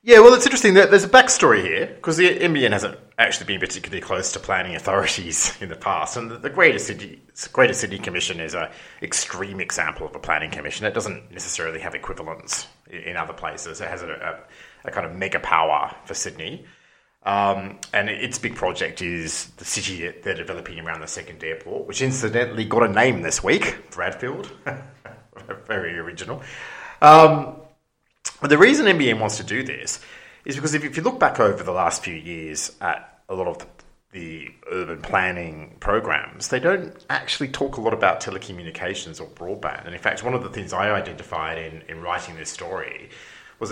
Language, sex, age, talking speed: English, male, 30-49, 185 wpm